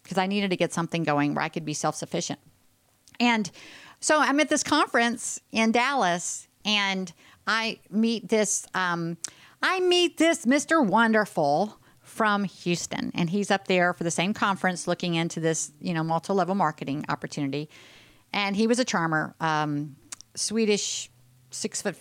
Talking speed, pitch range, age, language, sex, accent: 160 wpm, 165-215 Hz, 50-69, English, female, American